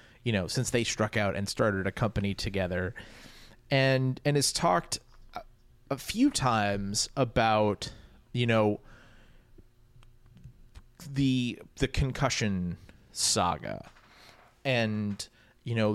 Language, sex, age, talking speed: English, male, 30-49, 105 wpm